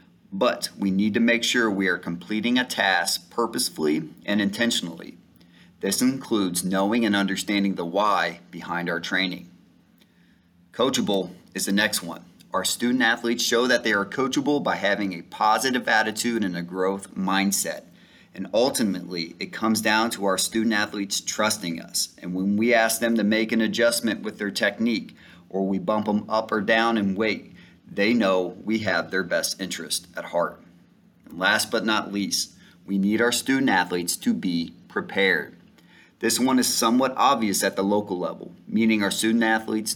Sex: male